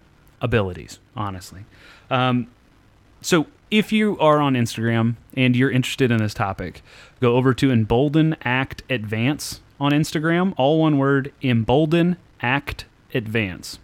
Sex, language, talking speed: male, English, 125 wpm